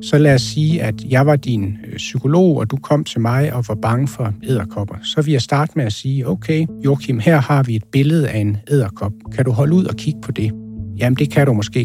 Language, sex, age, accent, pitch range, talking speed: Danish, male, 60-79, native, 110-145 Hz, 250 wpm